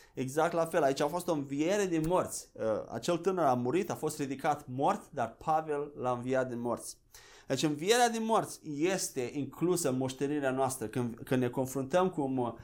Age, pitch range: 30-49, 145-200 Hz